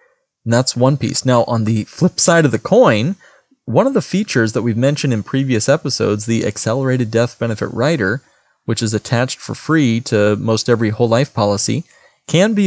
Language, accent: English, American